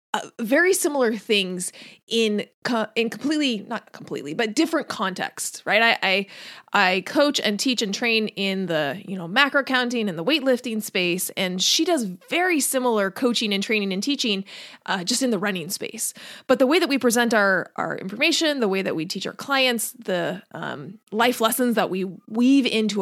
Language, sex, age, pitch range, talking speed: English, female, 30-49, 195-250 Hz, 190 wpm